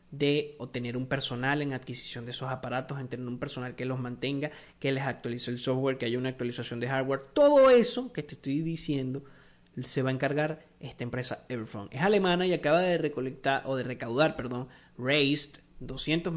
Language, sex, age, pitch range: Spanish, male, 30-49, 130-165 Hz